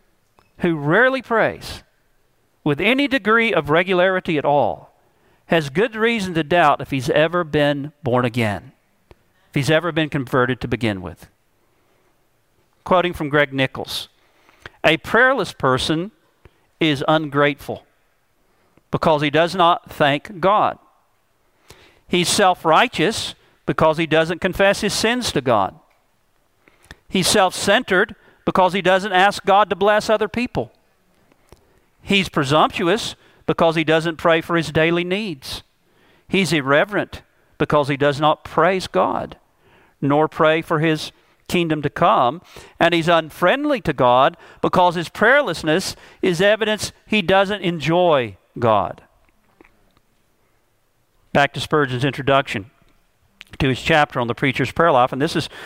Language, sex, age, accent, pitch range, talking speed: English, male, 50-69, American, 145-185 Hz, 130 wpm